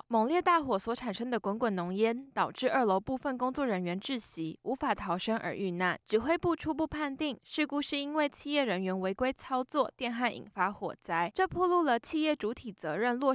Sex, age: female, 10-29